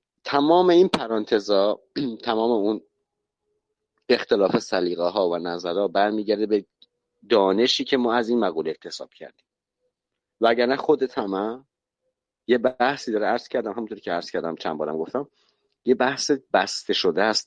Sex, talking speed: male, 145 wpm